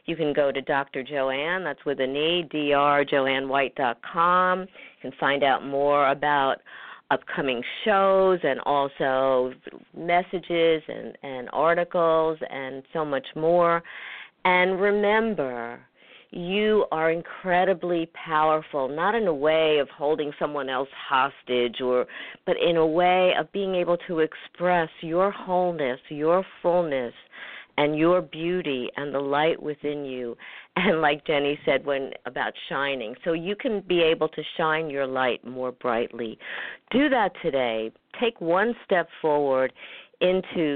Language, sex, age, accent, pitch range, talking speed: English, female, 50-69, American, 135-175 Hz, 135 wpm